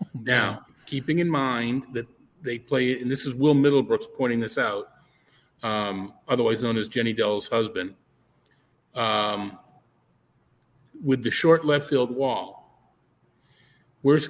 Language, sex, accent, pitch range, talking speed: English, male, American, 115-140 Hz, 125 wpm